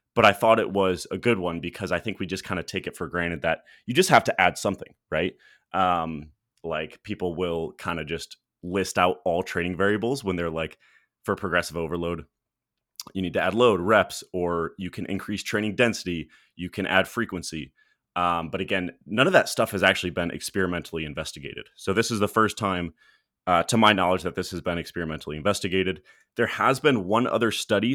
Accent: American